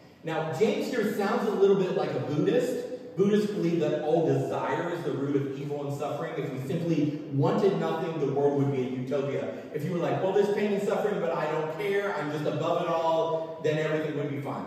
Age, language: 40-59, English